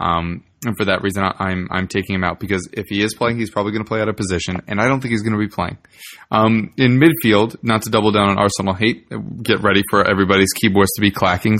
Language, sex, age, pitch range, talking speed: English, male, 20-39, 95-110 Hz, 260 wpm